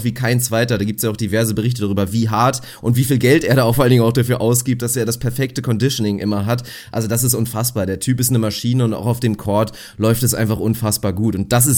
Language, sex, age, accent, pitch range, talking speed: German, male, 30-49, German, 110-130 Hz, 280 wpm